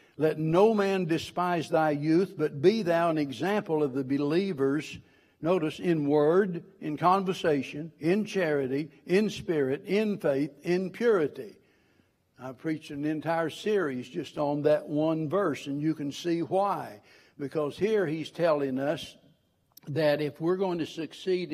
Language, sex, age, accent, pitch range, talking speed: English, male, 60-79, American, 145-185 Hz, 150 wpm